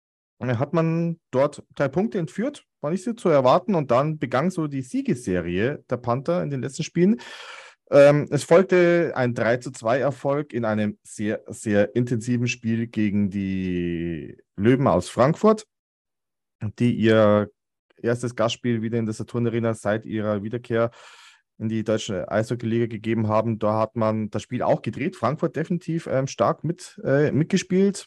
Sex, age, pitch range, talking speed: male, 30-49, 105-145 Hz, 150 wpm